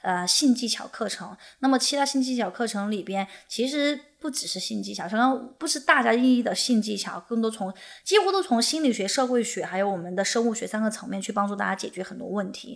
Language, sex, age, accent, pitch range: Chinese, female, 20-39, native, 205-255 Hz